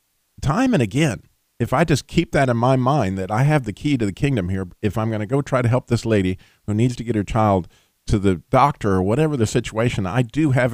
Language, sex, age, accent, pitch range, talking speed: English, male, 40-59, American, 100-140 Hz, 255 wpm